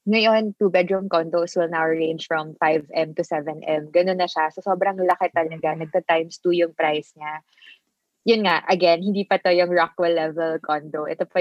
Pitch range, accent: 160-180 Hz, native